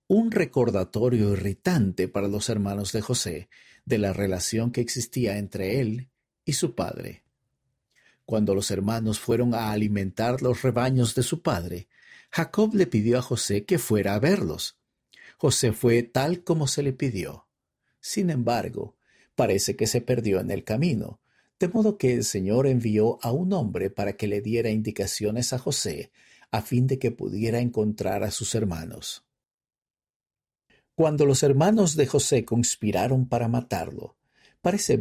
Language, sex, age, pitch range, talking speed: Spanish, male, 50-69, 105-135 Hz, 150 wpm